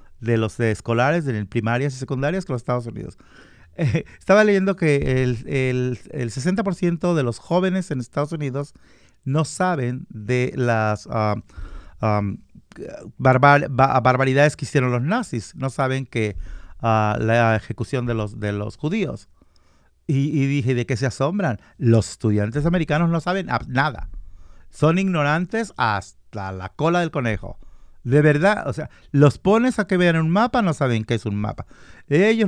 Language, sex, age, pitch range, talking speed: Spanish, male, 50-69, 115-165 Hz, 165 wpm